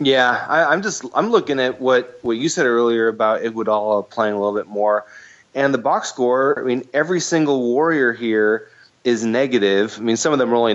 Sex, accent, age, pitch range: male, American, 30-49, 110-135 Hz